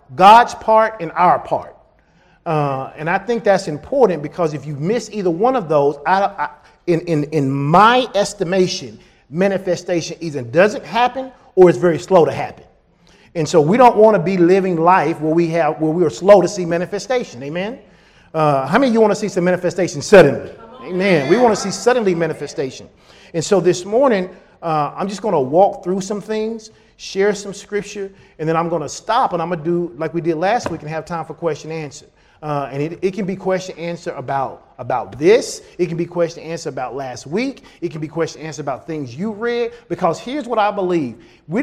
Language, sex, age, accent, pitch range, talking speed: English, male, 40-59, American, 160-215 Hz, 205 wpm